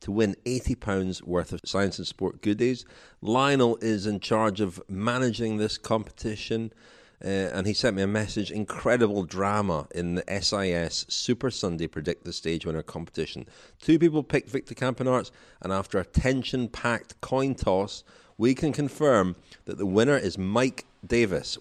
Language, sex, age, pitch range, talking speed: English, male, 40-59, 90-115 Hz, 155 wpm